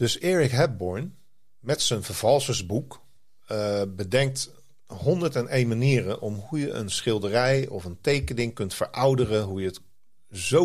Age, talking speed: 40-59, 135 wpm